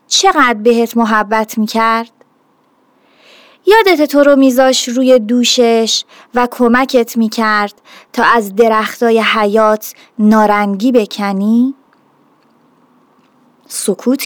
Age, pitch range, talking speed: 30-49, 220-290 Hz, 85 wpm